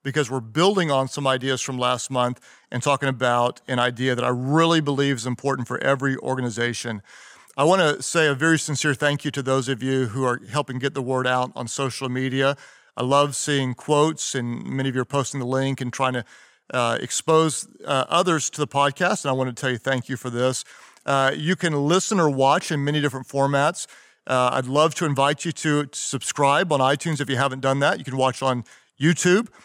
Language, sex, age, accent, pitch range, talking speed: English, male, 40-59, American, 130-155 Hz, 215 wpm